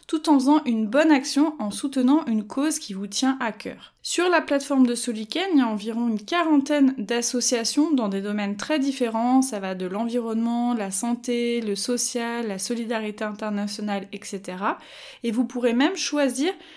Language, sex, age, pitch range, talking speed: French, female, 20-39, 220-285 Hz, 175 wpm